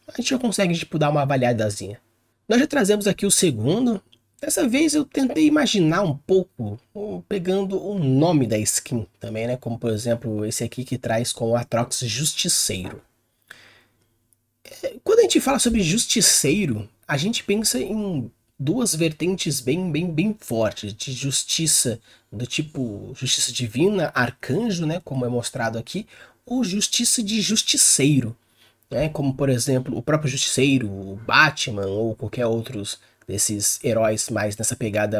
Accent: Brazilian